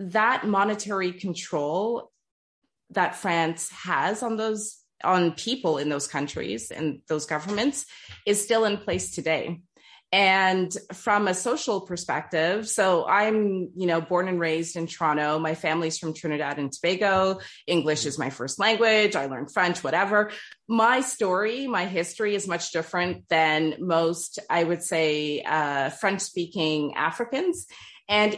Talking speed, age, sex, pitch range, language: 140 wpm, 30-49, female, 160-215 Hz, English